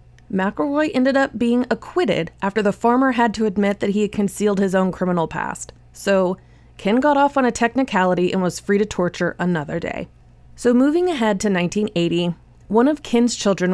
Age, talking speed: 20-39, 185 wpm